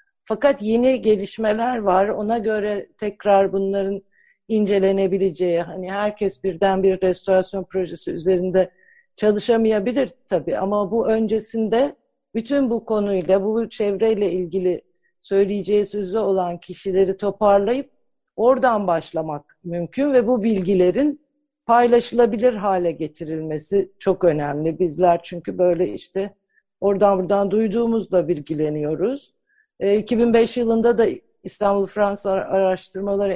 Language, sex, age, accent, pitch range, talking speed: Turkish, female, 50-69, native, 180-220 Hz, 105 wpm